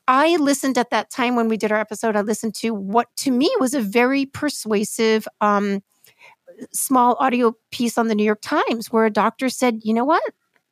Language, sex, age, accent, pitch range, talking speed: English, female, 50-69, American, 210-260 Hz, 200 wpm